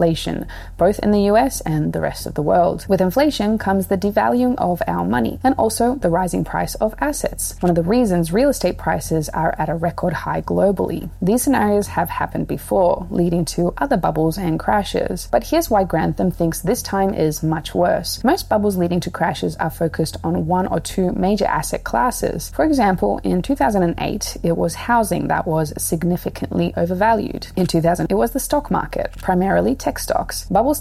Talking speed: 185 wpm